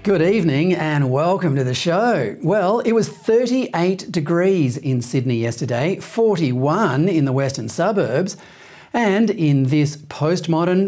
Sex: male